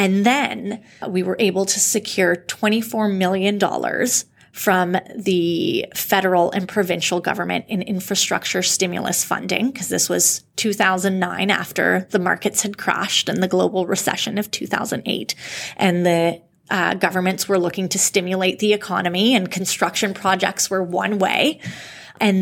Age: 20-39